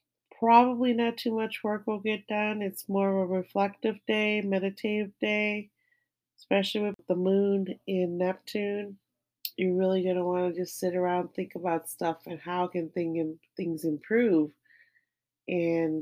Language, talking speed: English, 150 wpm